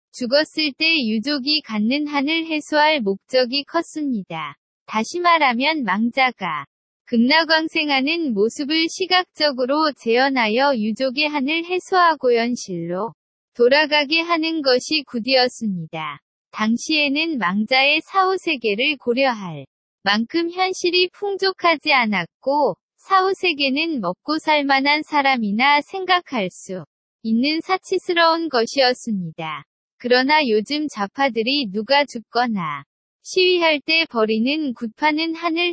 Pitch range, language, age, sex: 225-310 Hz, Korean, 20-39, female